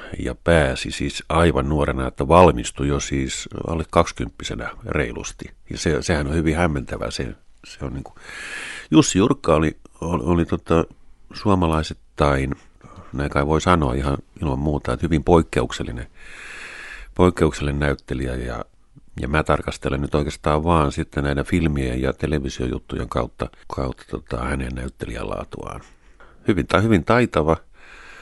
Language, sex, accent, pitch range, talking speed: Finnish, male, native, 70-95 Hz, 130 wpm